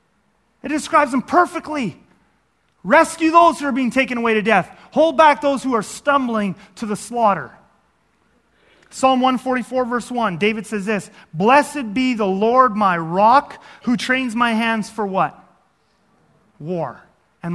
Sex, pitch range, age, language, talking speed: male, 195-265 Hz, 30-49, English, 145 wpm